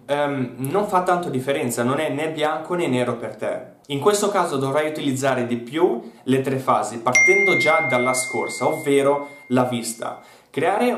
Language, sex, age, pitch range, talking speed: Italian, male, 20-39, 125-160 Hz, 170 wpm